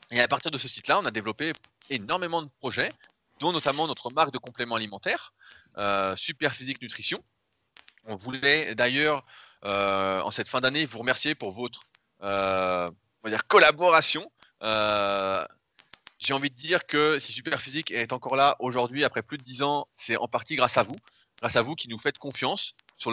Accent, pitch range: French, 105-140 Hz